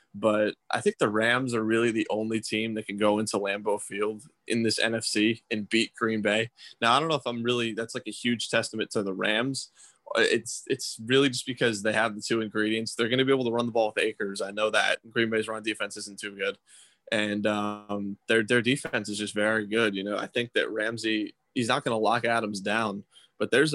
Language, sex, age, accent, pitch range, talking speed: English, male, 20-39, American, 105-115 Hz, 235 wpm